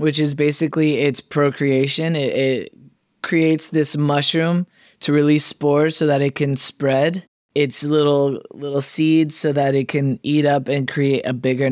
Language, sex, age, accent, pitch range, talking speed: English, male, 20-39, American, 135-155 Hz, 165 wpm